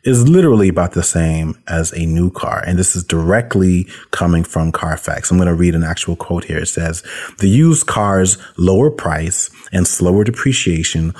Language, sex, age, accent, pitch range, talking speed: English, male, 30-49, American, 85-100 Hz, 180 wpm